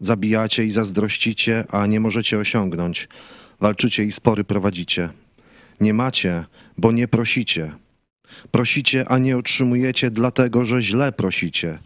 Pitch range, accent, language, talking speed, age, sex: 105-125 Hz, native, Polish, 120 wpm, 40-59, male